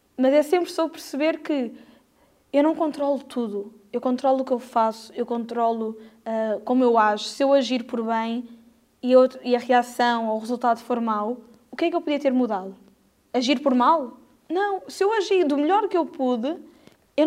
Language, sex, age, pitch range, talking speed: Portuguese, female, 10-29, 235-285 Hz, 195 wpm